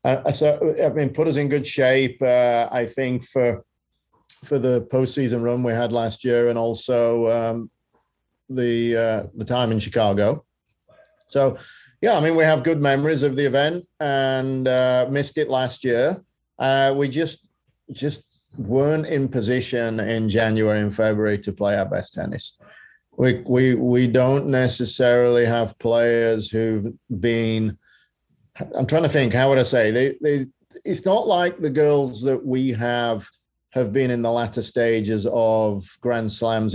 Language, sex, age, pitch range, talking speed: English, male, 40-59, 115-135 Hz, 160 wpm